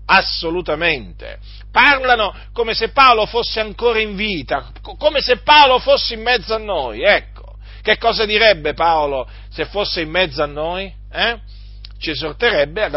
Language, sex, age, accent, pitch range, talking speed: Italian, male, 50-69, native, 150-220 Hz, 145 wpm